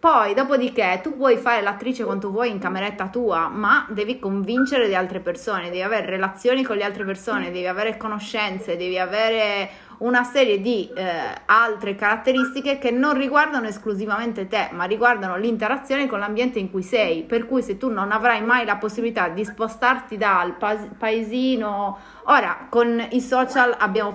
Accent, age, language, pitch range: native, 30-49, Italian, 205-250 Hz